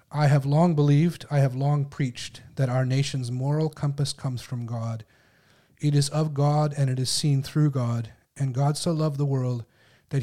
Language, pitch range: English, 125-145 Hz